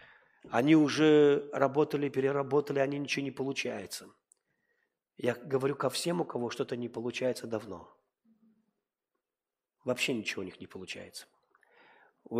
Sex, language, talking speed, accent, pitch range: male, Russian, 120 wpm, native, 110-155 Hz